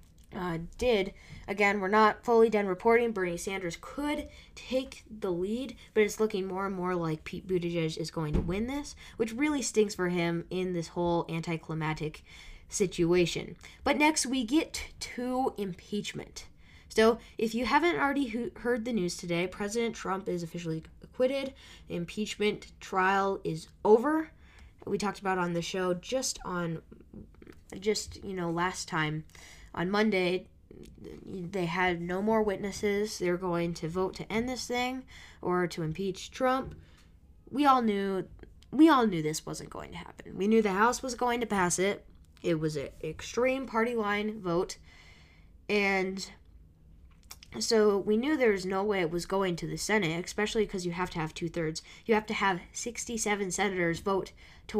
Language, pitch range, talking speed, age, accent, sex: English, 170-220 Hz, 165 wpm, 10-29, American, female